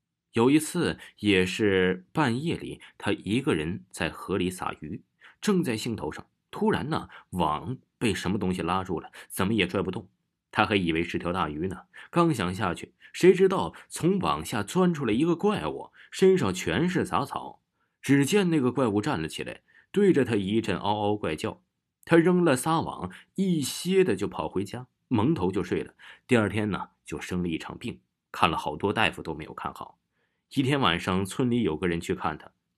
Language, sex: Chinese, male